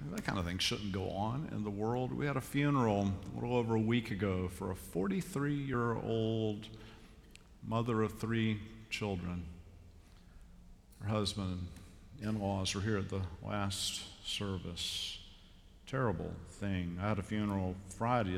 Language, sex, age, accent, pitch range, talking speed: English, male, 50-69, American, 95-115 Hz, 145 wpm